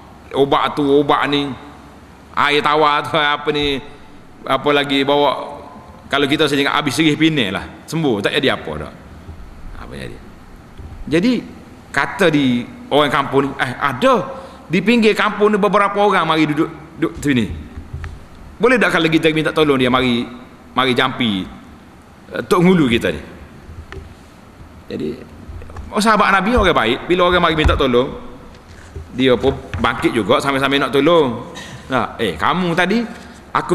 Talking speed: 150 wpm